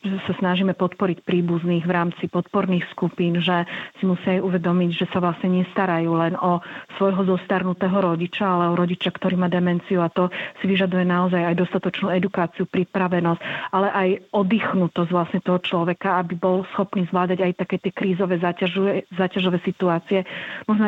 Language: Slovak